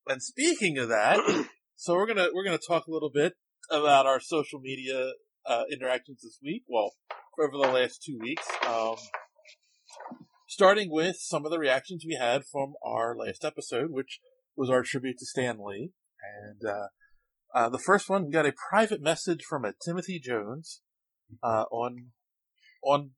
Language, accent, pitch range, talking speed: English, American, 130-185 Hz, 170 wpm